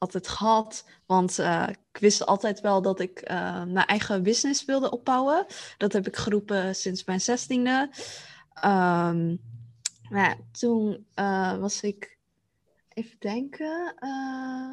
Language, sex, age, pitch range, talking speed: English, female, 20-39, 185-220 Hz, 125 wpm